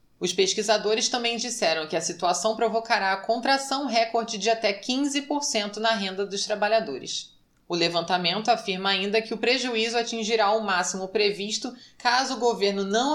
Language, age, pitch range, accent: Portuguese, 20-39, 195-230 Hz, Brazilian